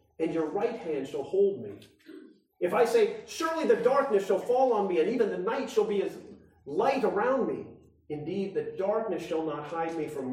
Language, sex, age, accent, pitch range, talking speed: English, male, 40-59, American, 170-275 Hz, 205 wpm